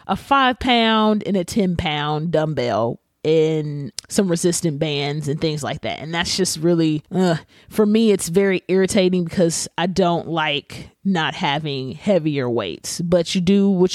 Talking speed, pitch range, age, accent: 165 wpm, 155-200 Hz, 30-49, American